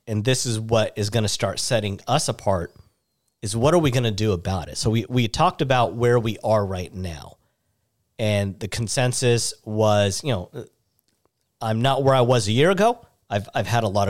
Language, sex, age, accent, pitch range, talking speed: English, male, 40-59, American, 105-130 Hz, 210 wpm